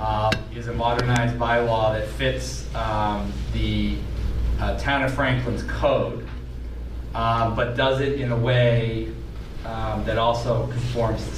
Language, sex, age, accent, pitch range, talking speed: English, male, 30-49, American, 105-125 Hz, 130 wpm